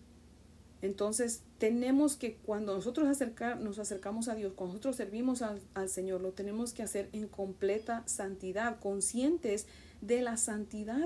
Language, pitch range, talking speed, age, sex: Spanish, 180-230 Hz, 145 wpm, 40-59, female